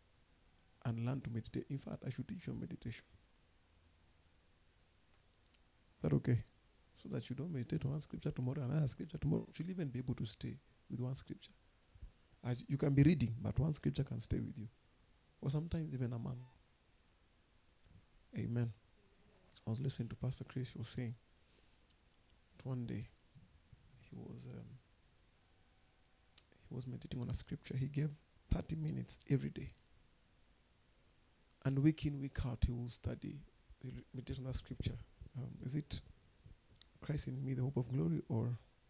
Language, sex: English, male